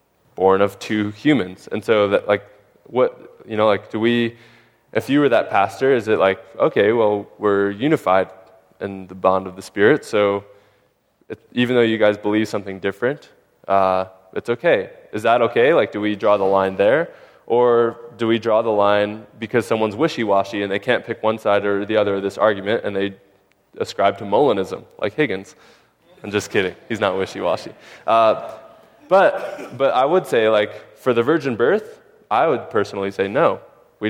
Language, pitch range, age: English, 100-120 Hz, 20-39